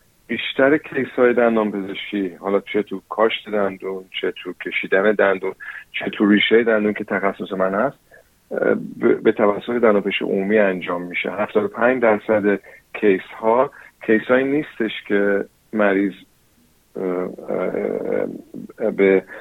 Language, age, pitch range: Persian, 40-59, 100-115 Hz